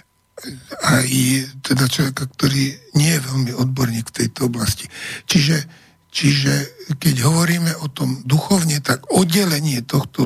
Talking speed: 130 wpm